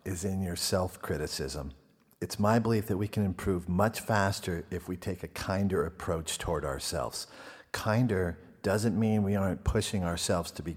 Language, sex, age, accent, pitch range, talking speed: English, male, 50-69, American, 95-120 Hz, 165 wpm